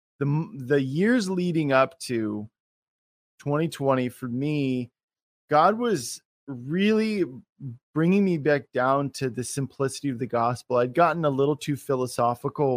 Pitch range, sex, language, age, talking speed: 125-150 Hz, male, English, 20-39, 130 wpm